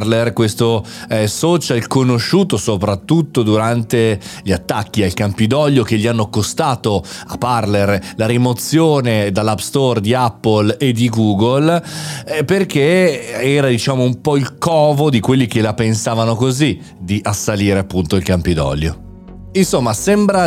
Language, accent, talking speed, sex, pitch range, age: Italian, native, 135 wpm, male, 110-140 Hz, 30-49